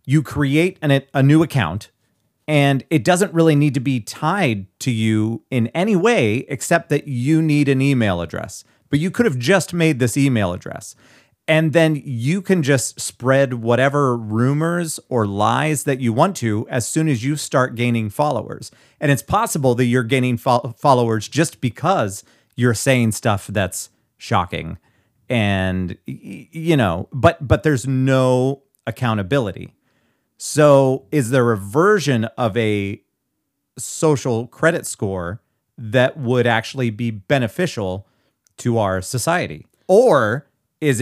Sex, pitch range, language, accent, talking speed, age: male, 110-145 Hz, English, American, 140 wpm, 40-59